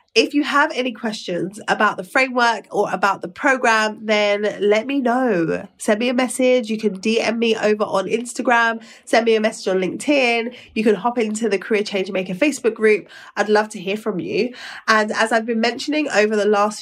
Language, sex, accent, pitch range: English, female, British, 195-225 Hz